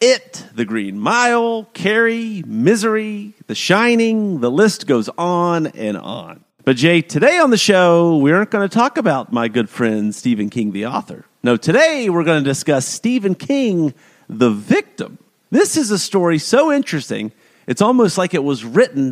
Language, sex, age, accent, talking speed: English, male, 40-59, American, 175 wpm